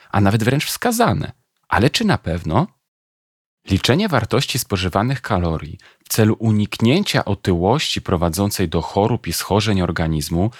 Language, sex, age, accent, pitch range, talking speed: Polish, male, 40-59, native, 90-115 Hz, 125 wpm